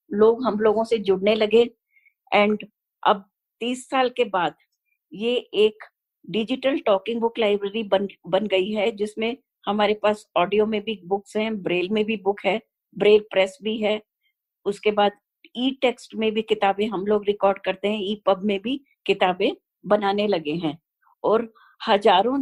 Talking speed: 160 wpm